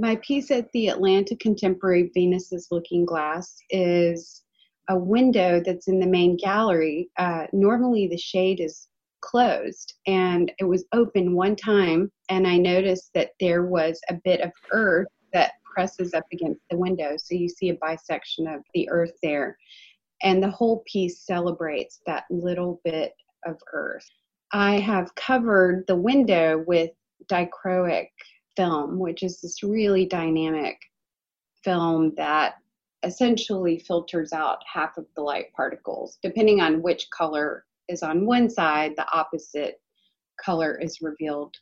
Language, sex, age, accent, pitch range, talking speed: English, female, 30-49, American, 170-195 Hz, 145 wpm